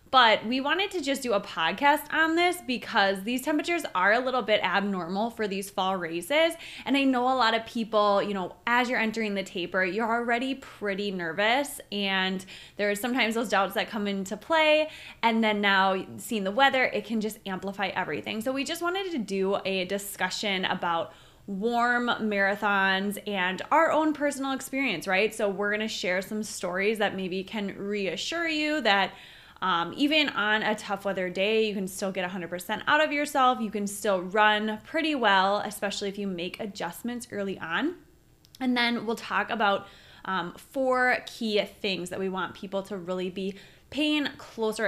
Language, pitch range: English, 195-260 Hz